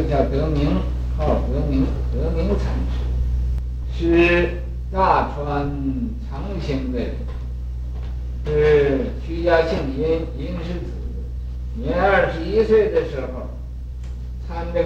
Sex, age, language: male, 60-79, Chinese